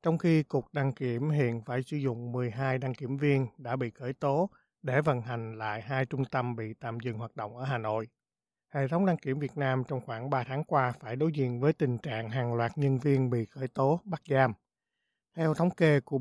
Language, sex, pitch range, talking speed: Vietnamese, male, 125-150 Hz, 230 wpm